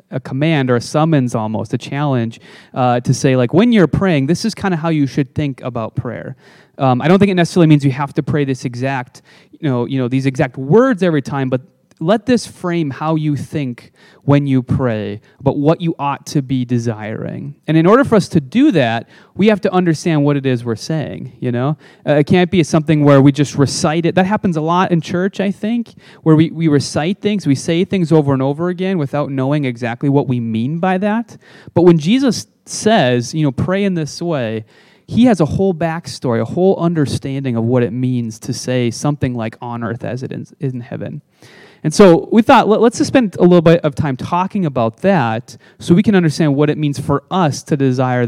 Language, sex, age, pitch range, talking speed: English, male, 30-49, 130-180 Hz, 225 wpm